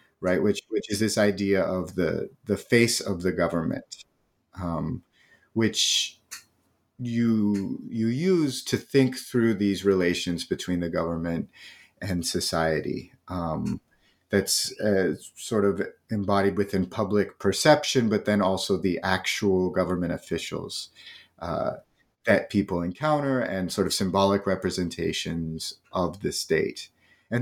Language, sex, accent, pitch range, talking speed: English, male, American, 90-115 Hz, 125 wpm